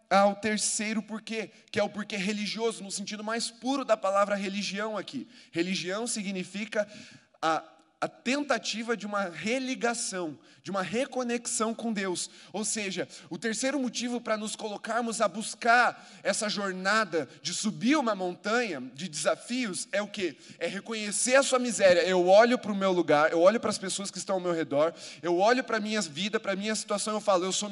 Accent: Brazilian